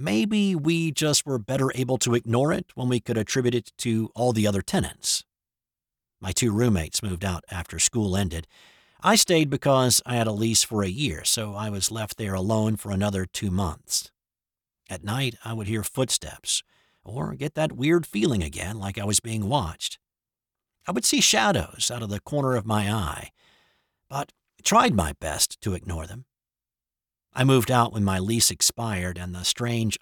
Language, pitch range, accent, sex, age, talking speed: English, 100-130 Hz, American, male, 50-69, 185 wpm